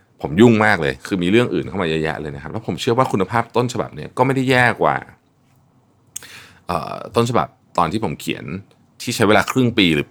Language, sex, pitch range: Thai, male, 100-130 Hz